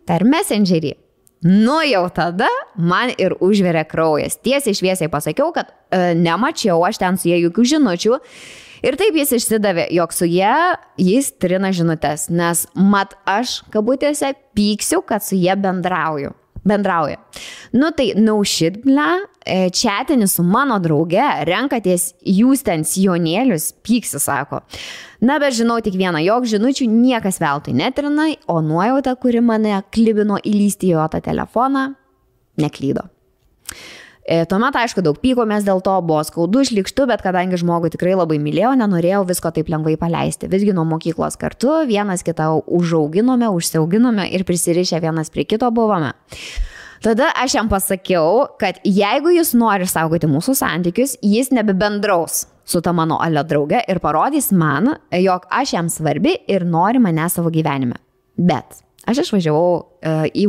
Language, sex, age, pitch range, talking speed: English, female, 20-39, 170-240 Hz, 140 wpm